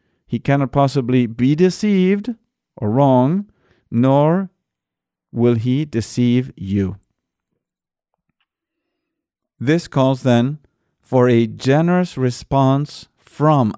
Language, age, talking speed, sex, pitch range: English, 50-69, 85 wpm, male, 115-160 Hz